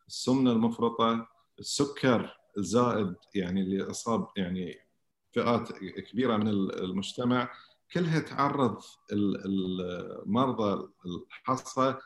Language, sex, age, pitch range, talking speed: English, male, 50-69, 100-130 Hz, 80 wpm